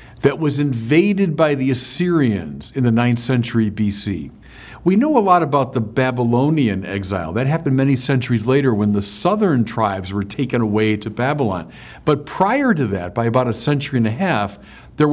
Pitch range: 115-160 Hz